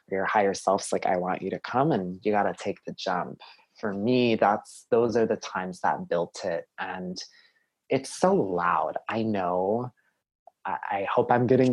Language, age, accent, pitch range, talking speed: English, 20-39, American, 100-120 Hz, 185 wpm